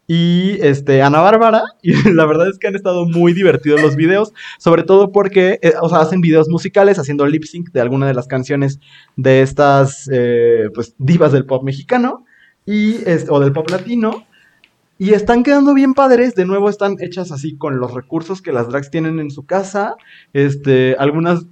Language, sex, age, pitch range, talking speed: Spanish, male, 20-39, 135-180 Hz, 185 wpm